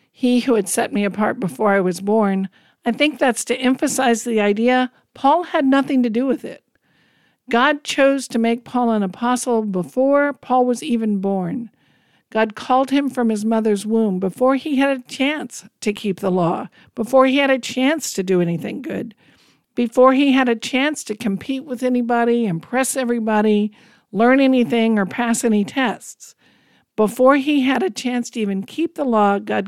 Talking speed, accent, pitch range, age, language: 180 wpm, American, 205-255 Hz, 50-69, English